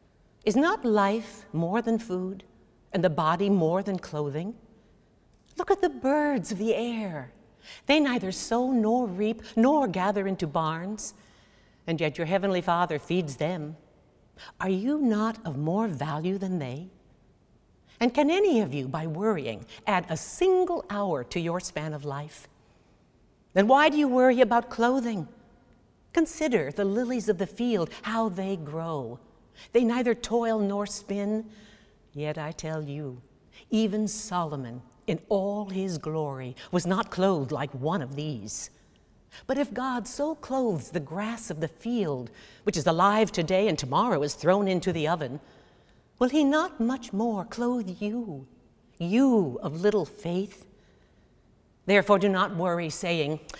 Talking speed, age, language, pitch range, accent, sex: 150 wpm, 60-79, English, 160-230 Hz, American, female